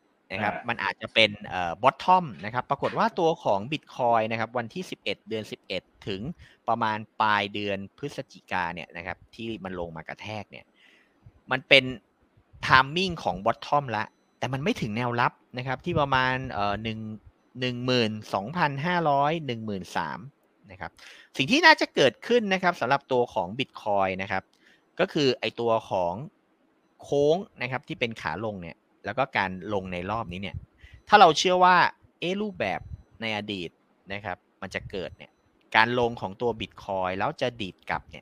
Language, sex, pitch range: Thai, male, 100-135 Hz